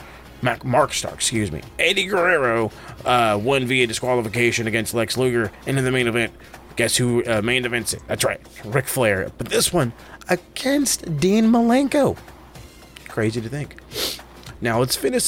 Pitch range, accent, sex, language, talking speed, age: 105-130 Hz, American, male, English, 155 wpm, 30-49